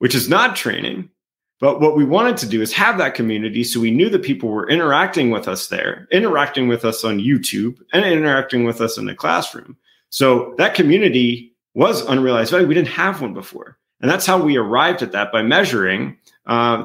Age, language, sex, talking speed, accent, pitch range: 40-59, English, male, 205 wpm, American, 110-160 Hz